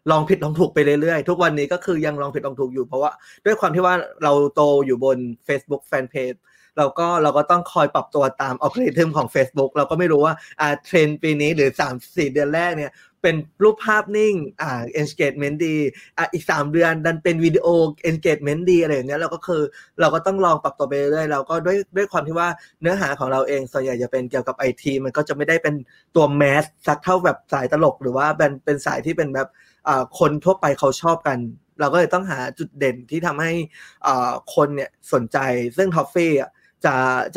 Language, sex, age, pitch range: Thai, male, 20-39, 140-170 Hz